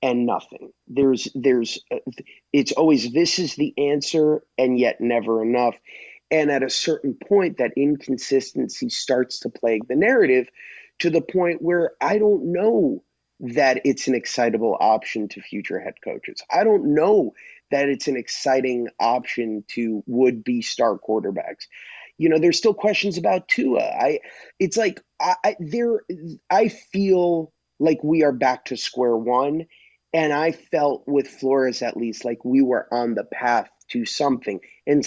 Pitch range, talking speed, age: 120-165 Hz, 155 wpm, 30-49